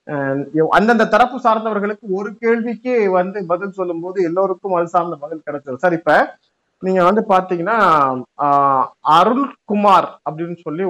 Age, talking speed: 30-49, 125 wpm